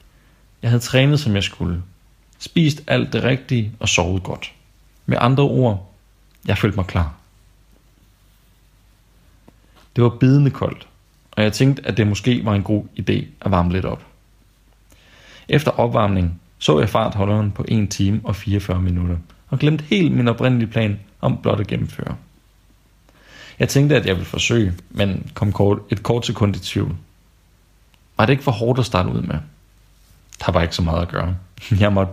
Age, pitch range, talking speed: 30-49, 90-120 Hz, 170 wpm